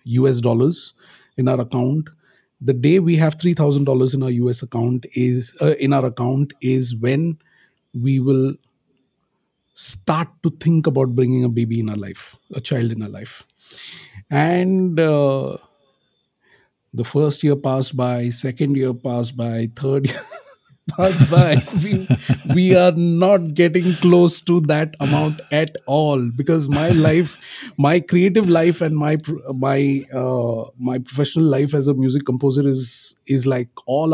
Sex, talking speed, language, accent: male, 155 wpm, English, Indian